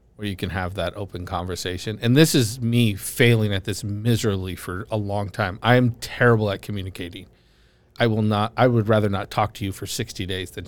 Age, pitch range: 40-59, 95-115 Hz